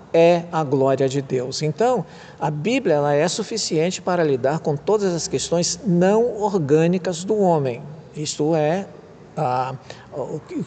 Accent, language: Brazilian, Portuguese